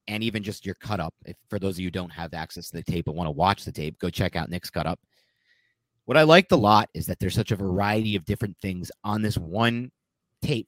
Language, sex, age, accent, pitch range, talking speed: English, male, 30-49, American, 95-125 Hz, 270 wpm